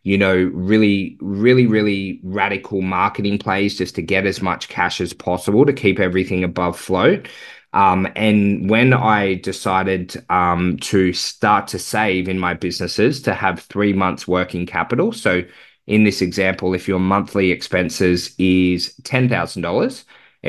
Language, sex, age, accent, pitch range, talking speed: English, male, 20-39, Australian, 90-105 Hz, 145 wpm